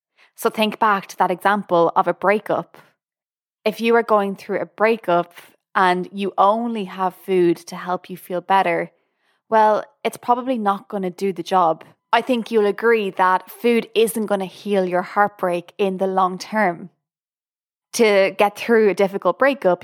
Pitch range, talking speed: 180-215 Hz, 165 wpm